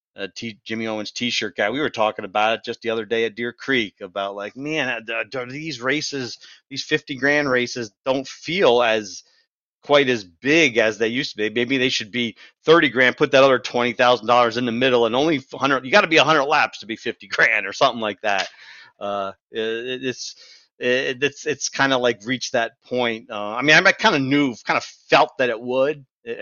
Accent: American